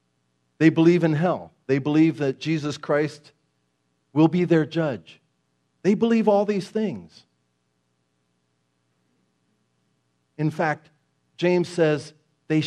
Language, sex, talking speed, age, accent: English, male, 110 wpm, 50-69, American